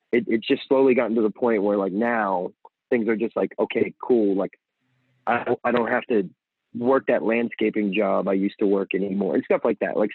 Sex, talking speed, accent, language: male, 225 wpm, American, English